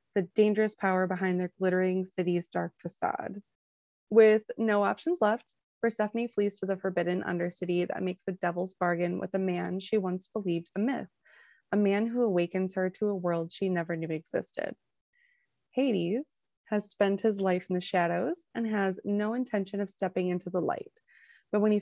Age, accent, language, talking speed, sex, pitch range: 20-39, American, English, 175 wpm, female, 180-205 Hz